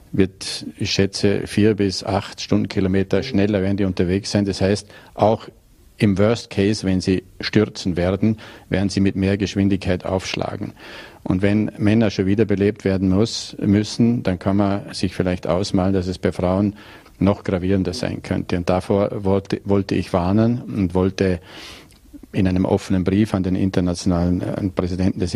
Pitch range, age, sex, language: 95-105 Hz, 40-59, male, German